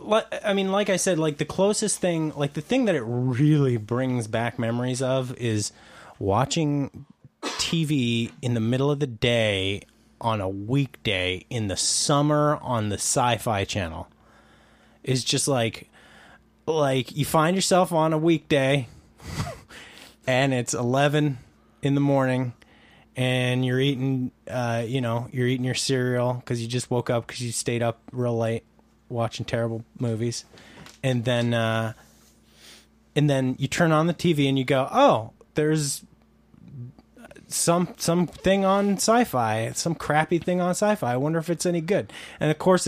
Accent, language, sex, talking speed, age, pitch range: American, English, male, 155 wpm, 20-39, 120-160 Hz